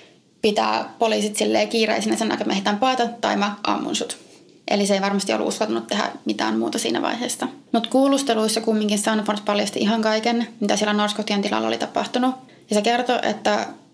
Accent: native